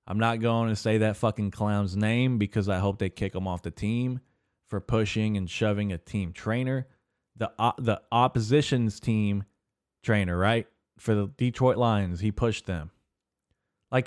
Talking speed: 170 wpm